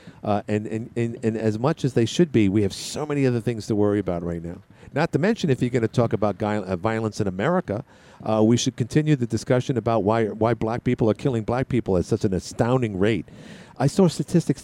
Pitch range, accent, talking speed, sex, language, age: 115-165 Hz, American, 235 wpm, male, English, 50-69